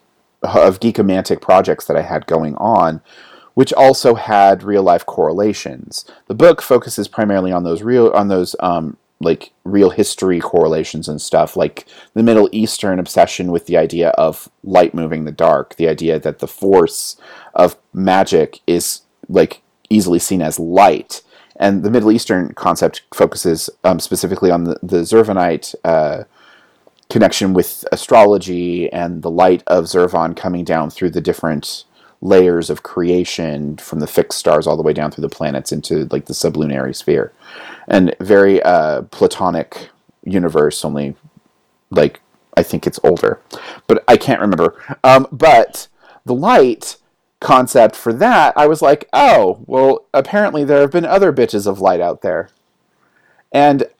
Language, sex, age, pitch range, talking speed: English, male, 30-49, 85-125 Hz, 155 wpm